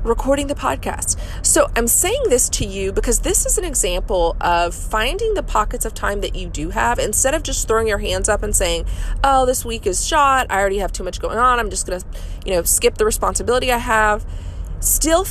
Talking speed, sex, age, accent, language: 225 wpm, female, 30-49, American, English